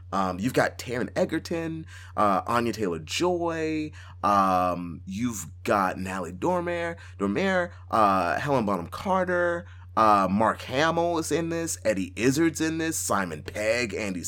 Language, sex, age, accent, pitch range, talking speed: English, male, 30-49, American, 90-115 Hz, 130 wpm